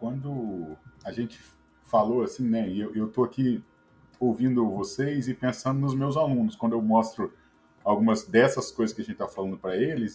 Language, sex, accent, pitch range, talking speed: Portuguese, male, Brazilian, 115-175 Hz, 175 wpm